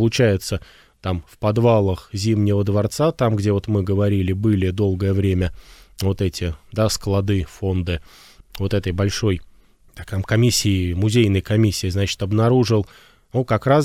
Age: 20-39